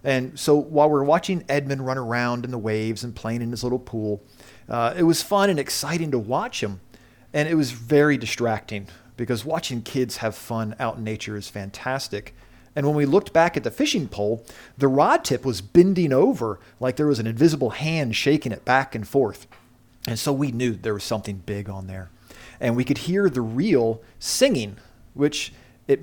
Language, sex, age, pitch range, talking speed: English, male, 40-59, 115-145 Hz, 200 wpm